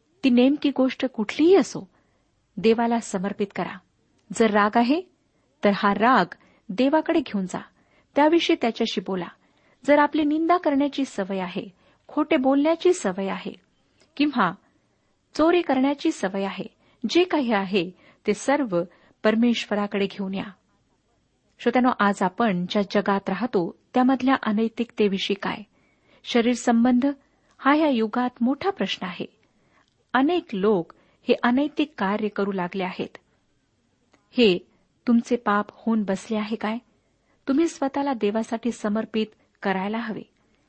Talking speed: 120 wpm